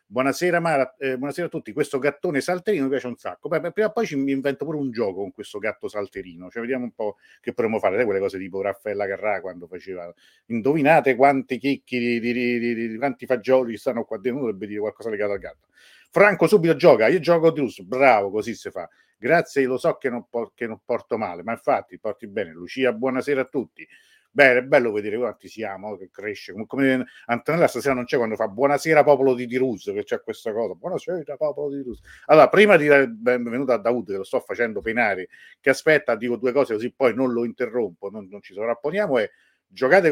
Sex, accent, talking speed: male, native, 220 wpm